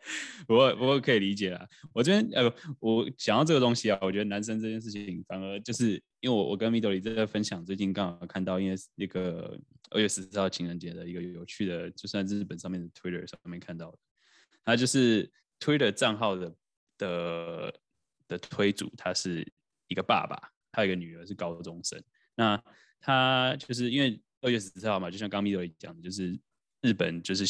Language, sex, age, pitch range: Chinese, male, 10-29, 90-110 Hz